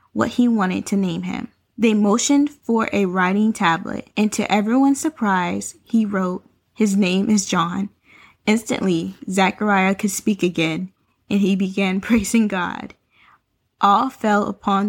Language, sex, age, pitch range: English, female, 10-29, 190-230 Hz